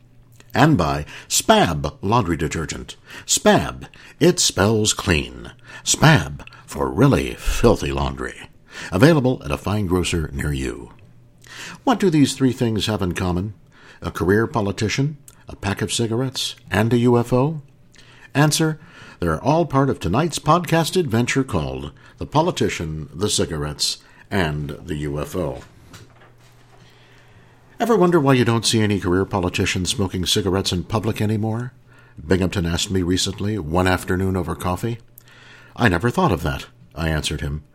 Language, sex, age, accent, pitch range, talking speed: English, male, 60-79, American, 85-130 Hz, 135 wpm